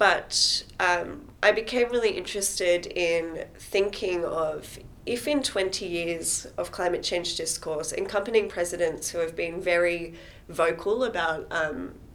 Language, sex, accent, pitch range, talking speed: English, female, Australian, 170-210 Hz, 130 wpm